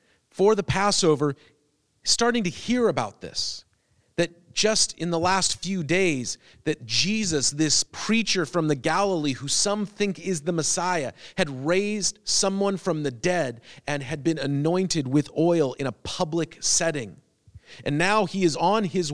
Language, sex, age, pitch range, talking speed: English, male, 40-59, 145-195 Hz, 155 wpm